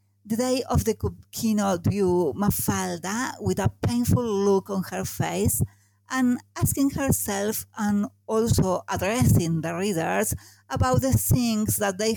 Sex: female